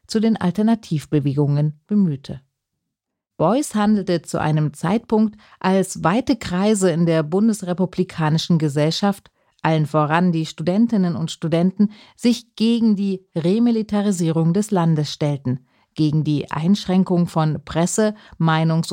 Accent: German